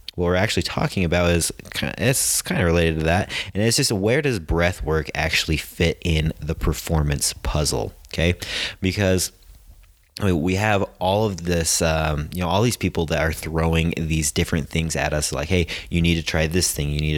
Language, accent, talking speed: English, American, 200 wpm